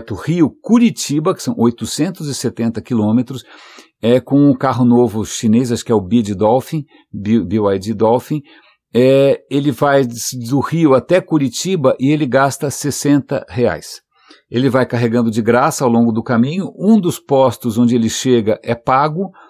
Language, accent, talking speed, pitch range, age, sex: English, Brazilian, 155 wpm, 115-135 Hz, 60-79, male